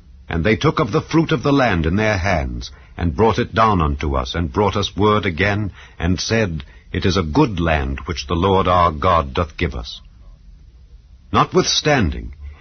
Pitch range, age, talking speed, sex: 85-125 Hz, 70-89, 185 wpm, male